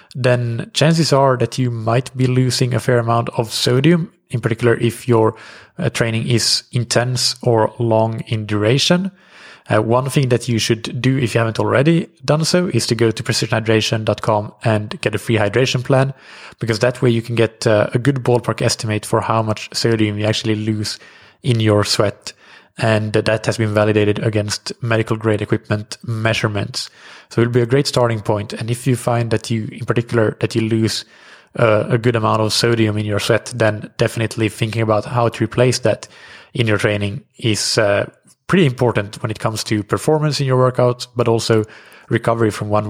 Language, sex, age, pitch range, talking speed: English, male, 20-39, 110-125 Hz, 185 wpm